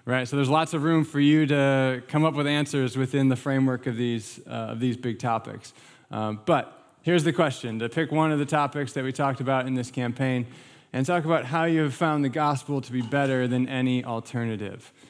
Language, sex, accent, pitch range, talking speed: English, male, American, 125-155 Hz, 215 wpm